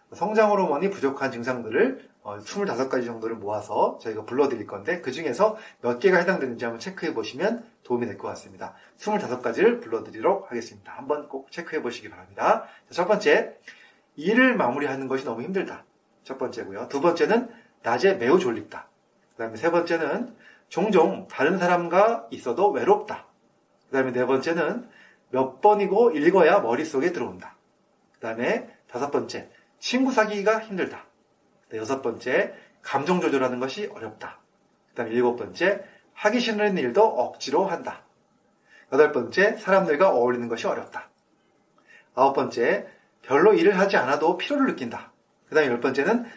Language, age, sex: Korean, 30-49, male